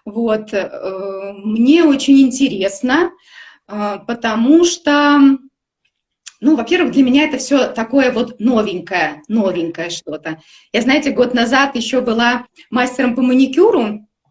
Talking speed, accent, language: 110 wpm, native, Russian